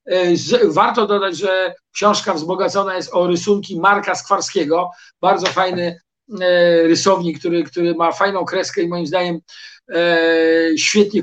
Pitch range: 170-200 Hz